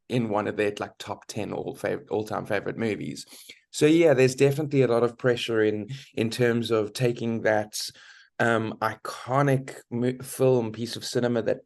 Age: 20-39